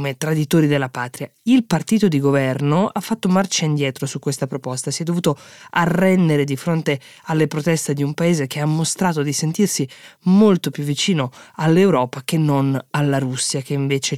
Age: 20-39